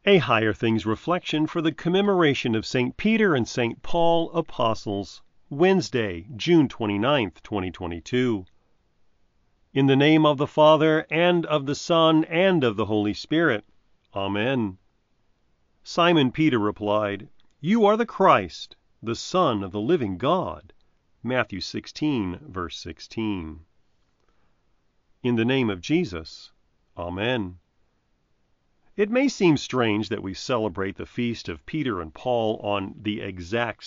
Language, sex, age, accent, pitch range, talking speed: English, male, 40-59, American, 105-155 Hz, 130 wpm